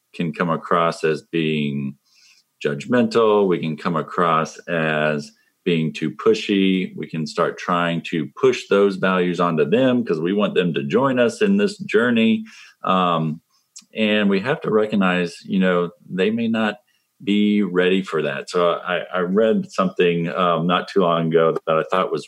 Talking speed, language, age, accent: 170 wpm, English, 40-59, American